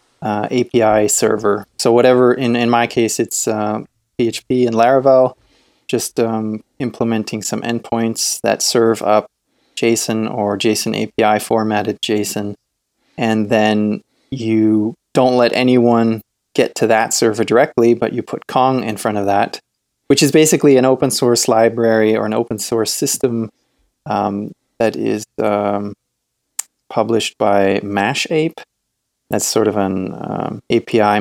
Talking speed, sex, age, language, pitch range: 140 wpm, male, 20-39, English, 105-125 Hz